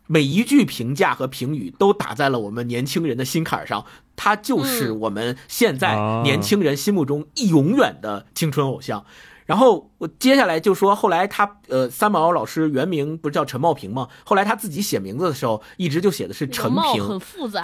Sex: male